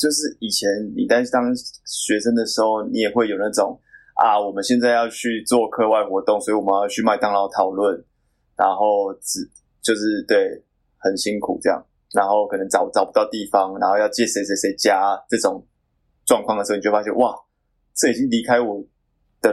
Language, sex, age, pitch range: Chinese, male, 20-39, 100-125 Hz